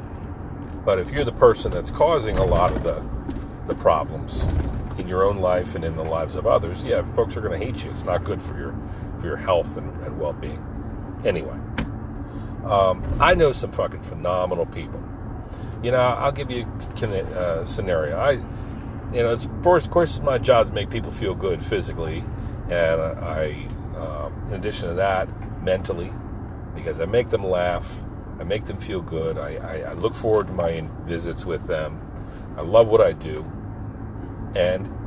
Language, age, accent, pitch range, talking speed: English, 40-59, American, 95-110 Hz, 185 wpm